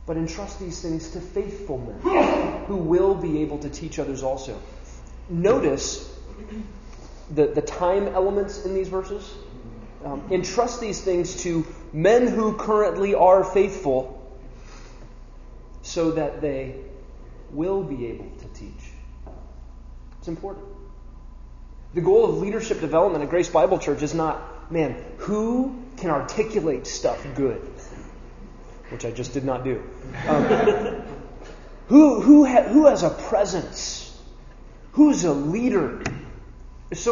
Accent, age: American, 30-49